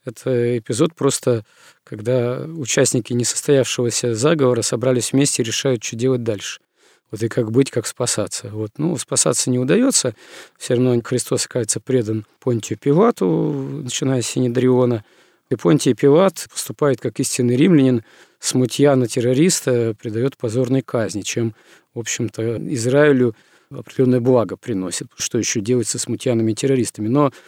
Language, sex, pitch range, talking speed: Russian, male, 120-135 Hz, 135 wpm